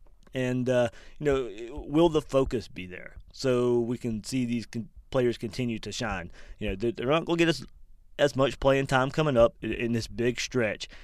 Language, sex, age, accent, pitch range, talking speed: English, male, 20-39, American, 110-135 Hz, 200 wpm